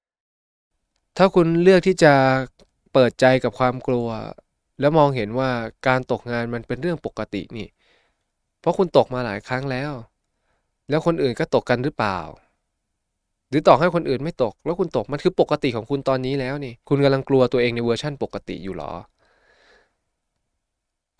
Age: 20-39